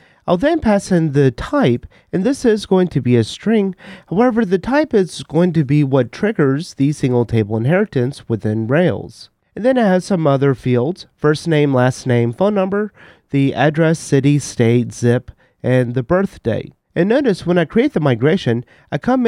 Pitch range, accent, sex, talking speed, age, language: 125-195 Hz, American, male, 185 wpm, 30-49, English